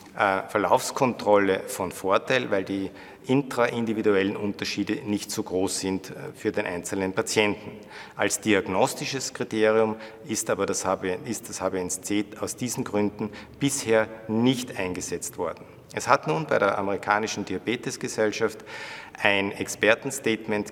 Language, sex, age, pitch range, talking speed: German, male, 50-69, 100-115 Hz, 115 wpm